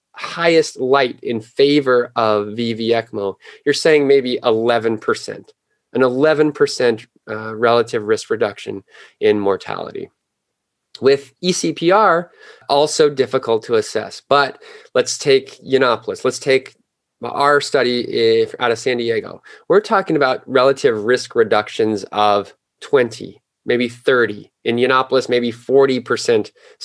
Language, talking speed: English, 120 wpm